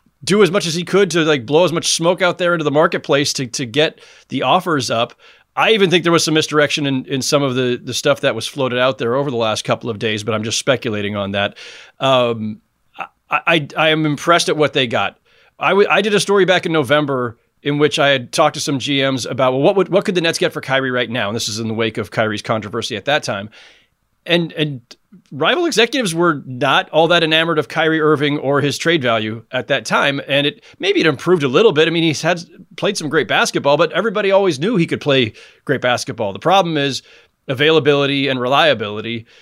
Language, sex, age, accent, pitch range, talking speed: English, male, 30-49, American, 130-170 Hz, 235 wpm